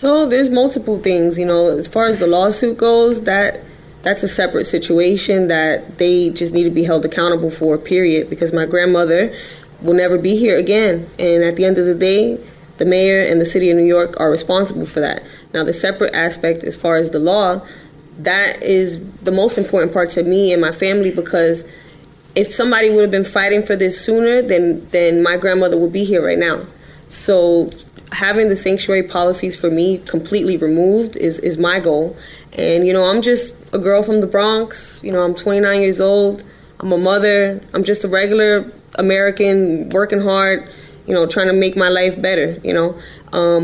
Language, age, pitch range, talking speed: English, 20-39, 170-200 Hz, 195 wpm